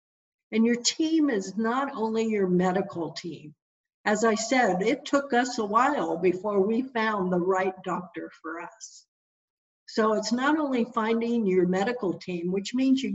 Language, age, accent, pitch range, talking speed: English, 60-79, American, 195-275 Hz, 165 wpm